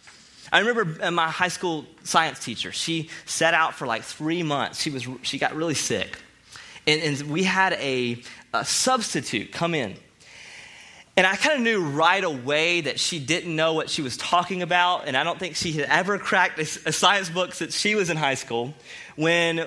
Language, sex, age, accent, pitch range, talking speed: English, male, 30-49, American, 160-225 Hz, 190 wpm